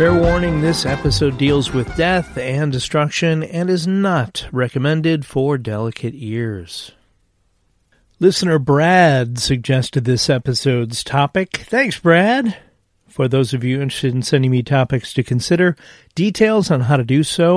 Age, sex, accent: 40-59, male, American